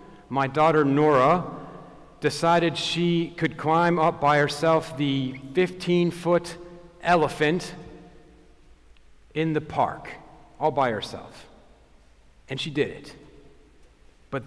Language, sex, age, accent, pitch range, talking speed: English, male, 50-69, American, 130-165 Hz, 100 wpm